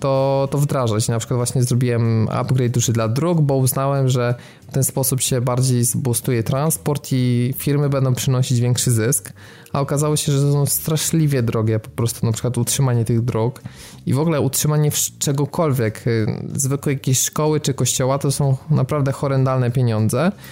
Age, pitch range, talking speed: 20-39, 125-150 Hz, 165 wpm